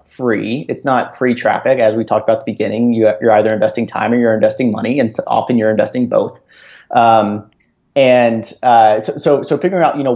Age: 30-49